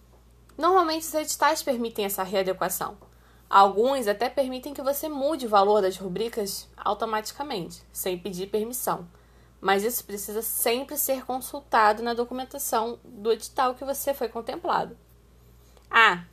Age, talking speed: 20-39, 130 wpm